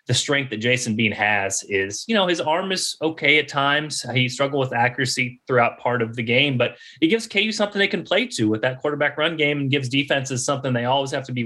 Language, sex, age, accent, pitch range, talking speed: English, male, 30-49, American, 130-190 Hz, 245 wpm